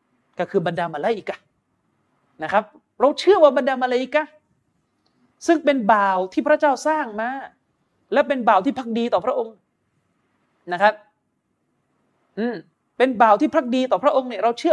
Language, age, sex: Thai, 30-49, male